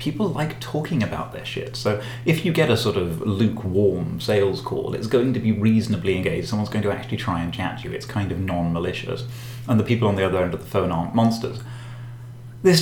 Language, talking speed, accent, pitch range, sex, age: English, 220 wpm, British, 100-125 Hz, male, 30-49